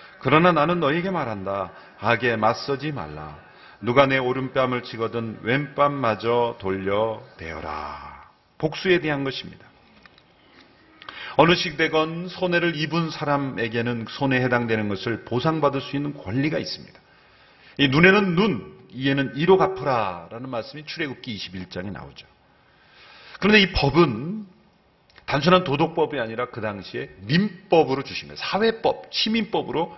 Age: 40-59